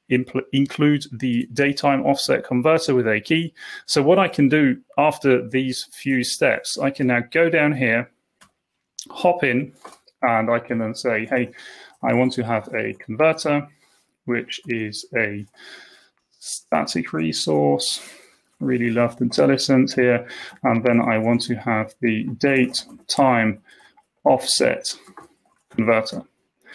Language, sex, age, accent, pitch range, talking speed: English, male, 30-49, British, 115-140 Hz, 130 wpm